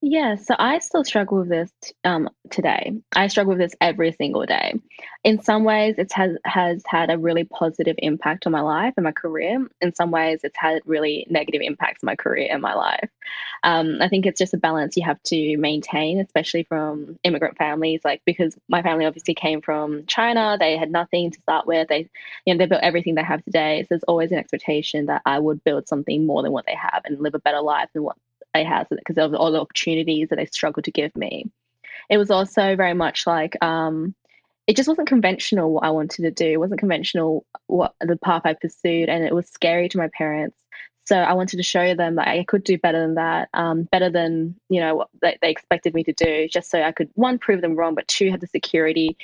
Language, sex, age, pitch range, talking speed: English, female, 10-29, 160-185 Hz, 230 wpm